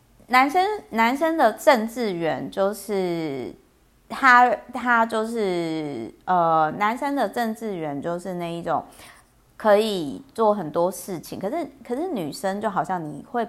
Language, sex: Chinese, female